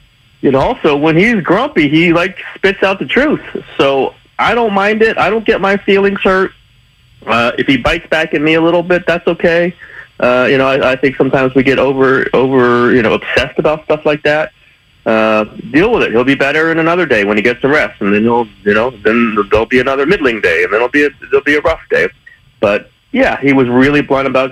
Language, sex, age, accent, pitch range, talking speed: English, male, 40-59, American, 105-155 Hz, 235 wpm